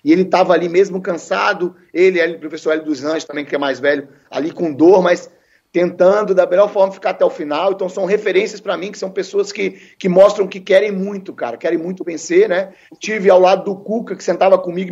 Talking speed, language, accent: 235 wpm, English, Brazilian